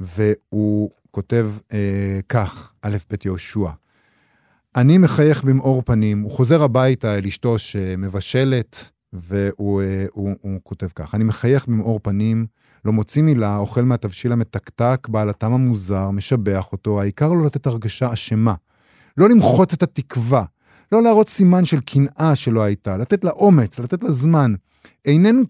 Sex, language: male, Hebrew